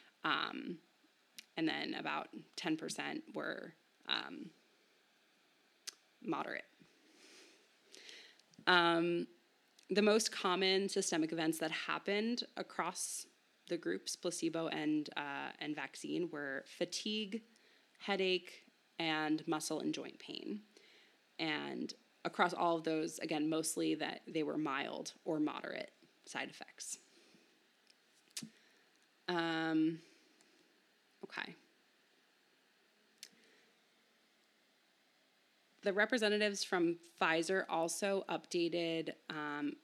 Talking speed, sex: 85 wpm, female